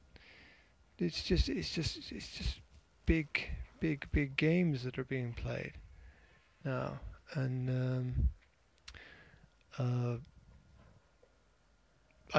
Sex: male